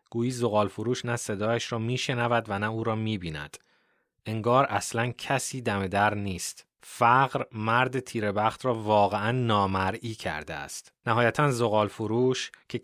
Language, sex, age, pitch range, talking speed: Persian, male, 30-49, 95-120 Hz, 140 wpm